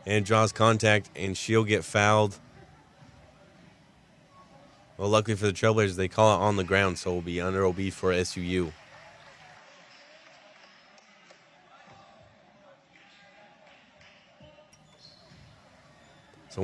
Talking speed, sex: 95 wpm, male